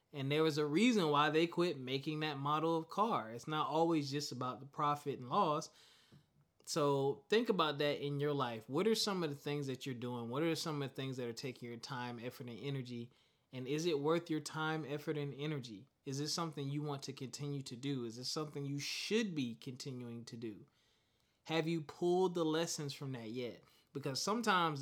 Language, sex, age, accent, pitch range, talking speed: English, male, 20-39, American, 130-155 Hz, 215 wpm